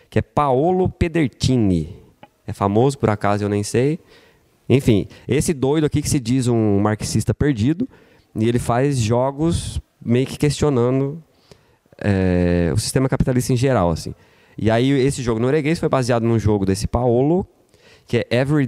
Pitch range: 105-140 Hz